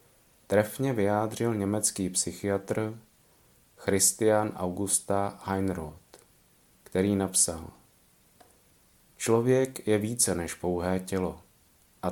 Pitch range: 90-105 Hz